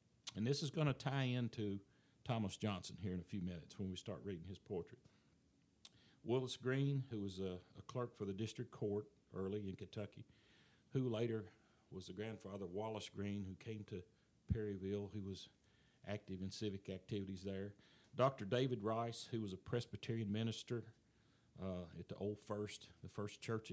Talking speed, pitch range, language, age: 170 wpm, 100-120 Hz, English, 50-69